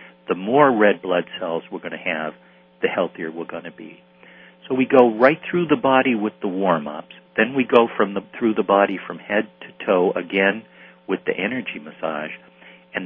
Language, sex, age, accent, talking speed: English, male, 50-69, American, 200 wpm